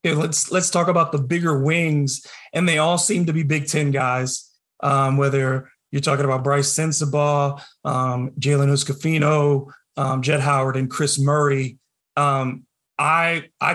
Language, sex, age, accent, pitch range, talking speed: English, male, 30-49, American, 145-180 Hz, 155 wpm